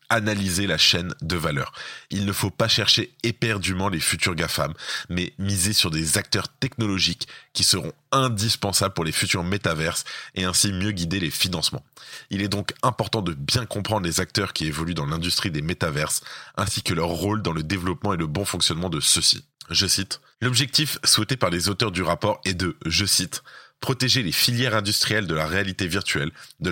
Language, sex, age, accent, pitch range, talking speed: French, male, 20-39, French, 85-110 Hz, 185 wpm